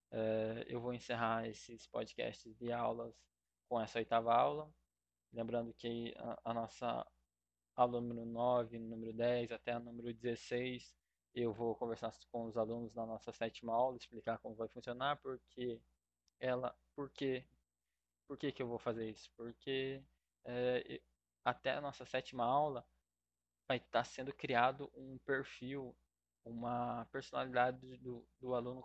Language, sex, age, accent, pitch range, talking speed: Portuguese, male, 20-39, Brazilian, 105-125 Hz, 140 wpm